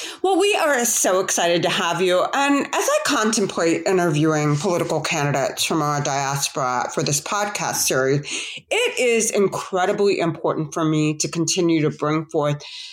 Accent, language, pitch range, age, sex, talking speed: American, English, 150-200 Hz, 30-49, female, 155 wpm